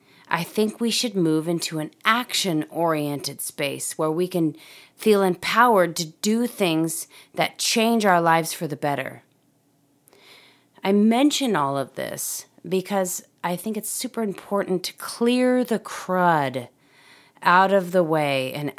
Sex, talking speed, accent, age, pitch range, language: female, 140 wpm, American, 30-49, 145-200 Hz, English